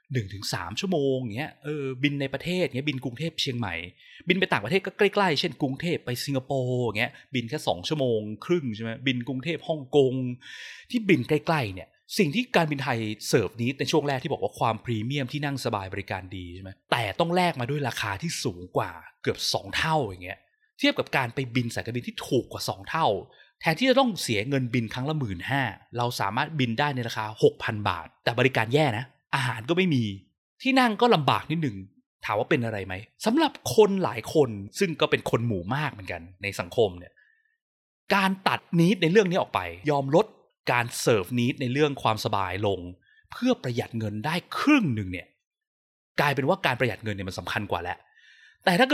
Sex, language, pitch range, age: male, Thai, 115-170 Hz, 20-39